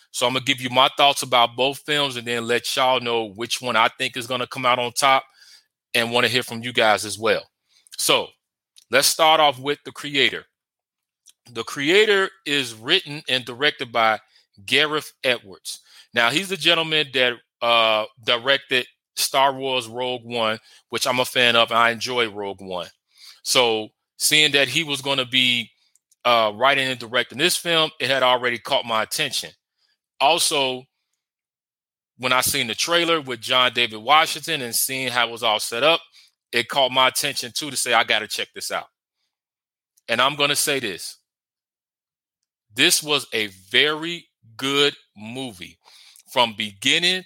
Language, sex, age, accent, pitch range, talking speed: English, male, 30-49, American, 120-145 Hz, 175 wpm